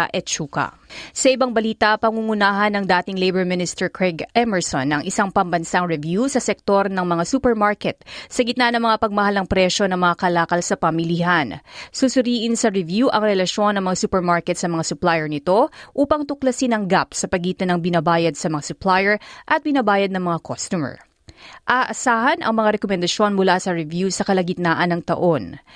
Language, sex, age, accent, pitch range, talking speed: Filipino, female, 20-39, native, 175-220 Hz, 160 wpm